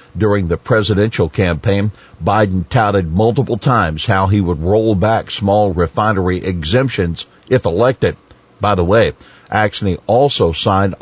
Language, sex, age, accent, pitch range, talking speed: English, male, 50-69, American, 95-120 Hz, 130 wpm